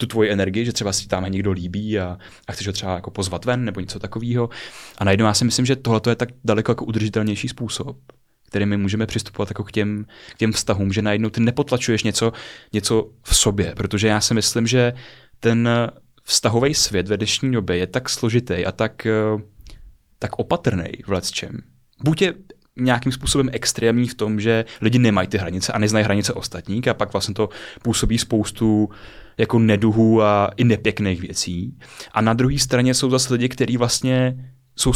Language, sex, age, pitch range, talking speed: Czech, male, 20-39, 105-125 Hz, 185 wpm